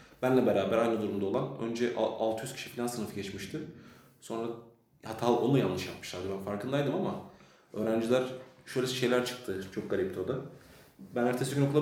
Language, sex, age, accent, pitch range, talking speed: Turkish, male, 30-49, native, 125-145 Hz, 155 wpm